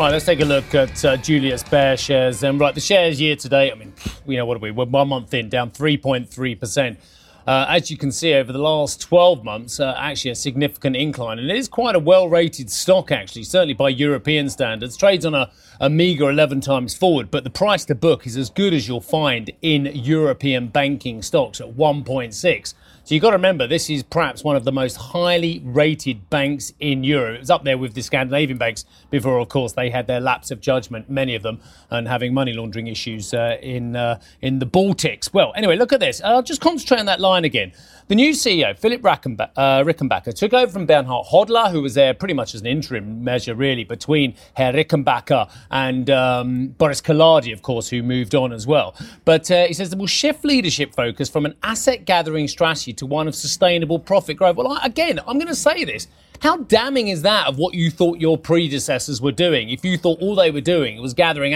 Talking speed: 220 wpm